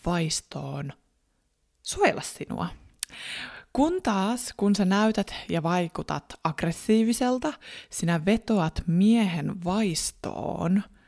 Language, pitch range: Finnish, 165-215 Hz